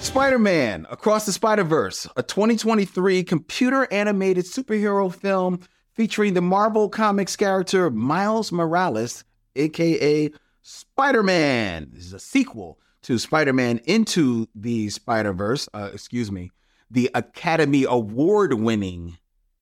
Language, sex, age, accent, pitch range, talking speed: English, male, 40-59, American, 120-185 Hz, 100 wpm